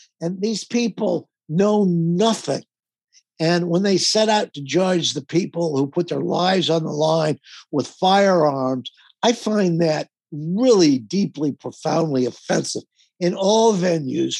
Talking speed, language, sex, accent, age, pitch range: 140 wpm, English, male, American, 60-79, 150-190 Hz